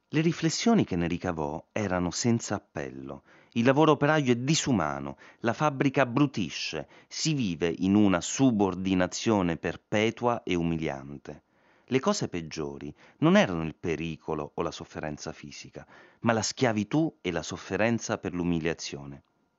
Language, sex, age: Italian, male, 30-49